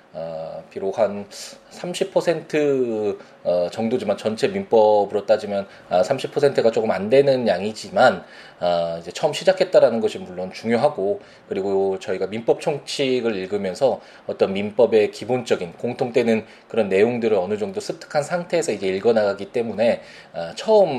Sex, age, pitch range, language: male, 20-39, 95-155 Hz, Korean